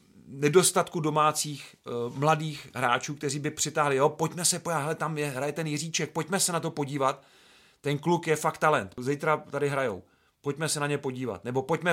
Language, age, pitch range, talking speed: Czech, 40-59, 130-155 Hz, 180 wpm